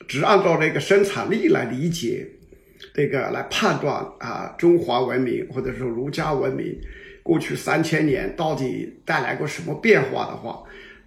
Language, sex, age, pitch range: Chinese, male, 50-69, 155-200 Hz